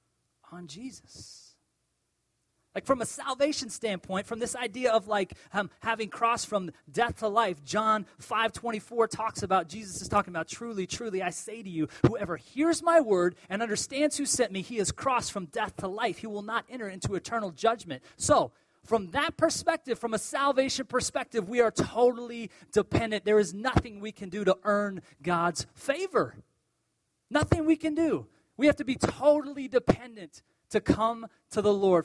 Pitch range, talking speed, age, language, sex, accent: 175-255 Hz, 175 wpm, 30-49, English, male, American